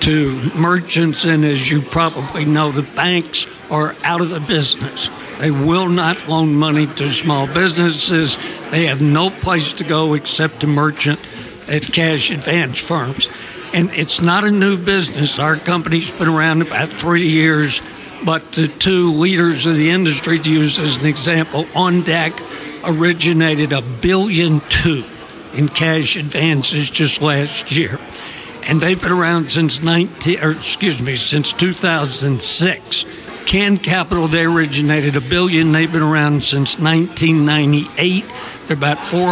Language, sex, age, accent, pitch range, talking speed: English, male, 60-79, American, 150-170 Hz, 155 wpm